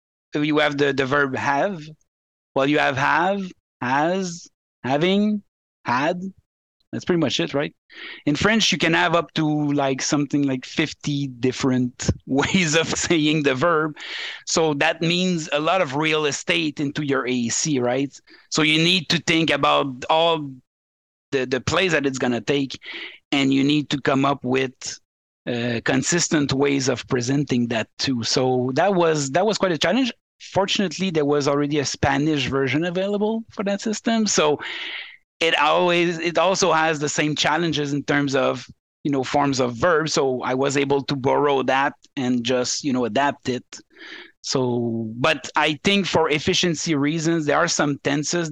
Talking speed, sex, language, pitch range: 170 wpm, male, English, 135-170 Hz